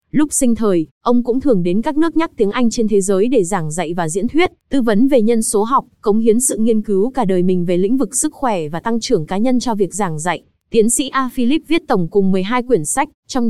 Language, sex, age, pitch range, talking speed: Vietnamese, female, 20-39, 205-255 Hz, 265 wpm